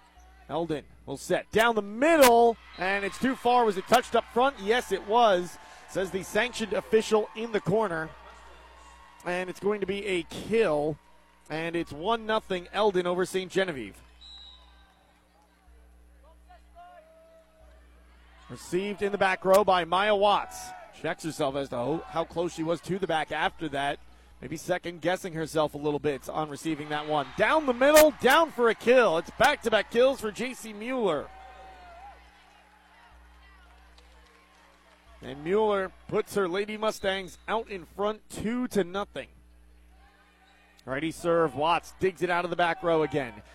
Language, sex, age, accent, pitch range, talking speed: English, male, 30-49, American, 155-225 Hz, 150 wpm